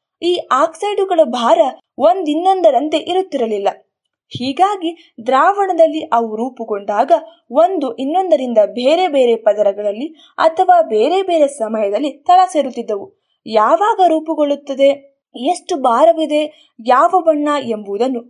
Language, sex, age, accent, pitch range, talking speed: Kannada, female, 20-39, native, 250-345 Hz, 90 wpm